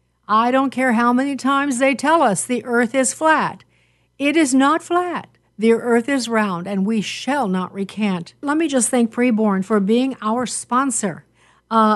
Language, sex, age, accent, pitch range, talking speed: English, female, 60-79, American, 200-250 Hz, 180 wpm